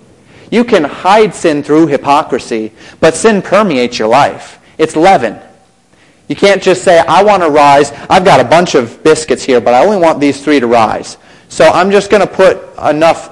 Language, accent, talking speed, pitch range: English, American, 195 wpm, 135-180 Hz